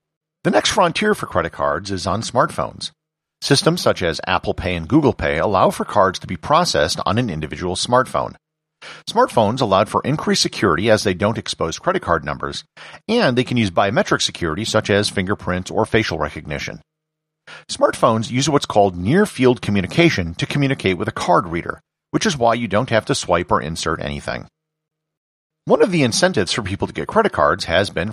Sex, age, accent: male, 50-69, American